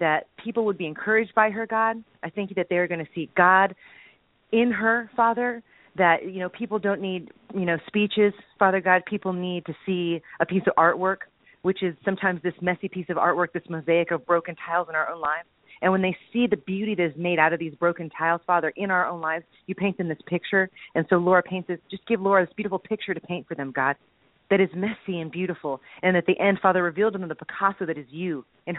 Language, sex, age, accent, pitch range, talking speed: English, female, 30-49, American, 170-205 Hz, 235 wpm